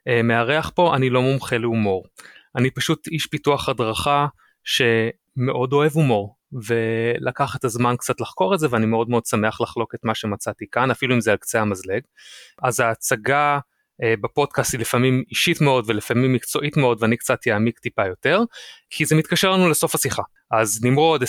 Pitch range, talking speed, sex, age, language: 115-140 Hz, 165 wpm, male, 30-49, Hebrew